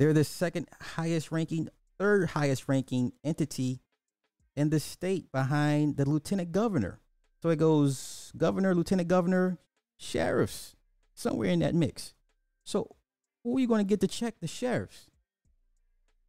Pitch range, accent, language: 100-145 Hz, American, English